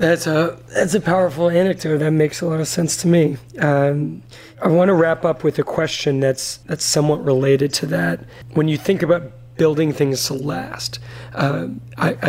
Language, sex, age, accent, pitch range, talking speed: English, male, 30-49, American, 125-150 Hz, 185 wpm